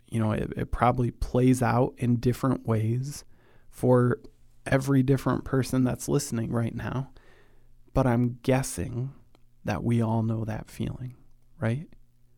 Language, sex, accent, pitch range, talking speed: English, male, American, 120-130 Hz, 135 wpm